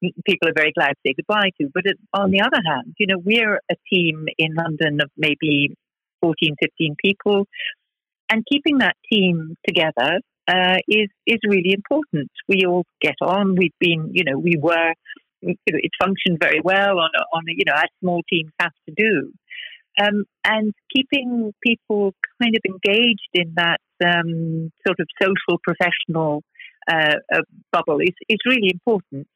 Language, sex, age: English, female, 60-79